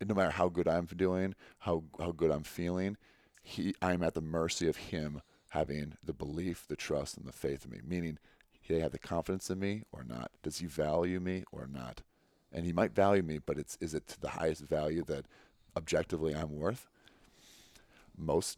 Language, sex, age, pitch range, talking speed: English, male, 40-59, 75-90 Hz, 195 wpm